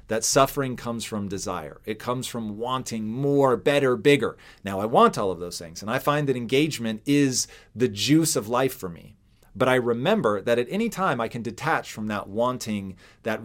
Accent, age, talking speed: American, 40-59, 200 wpm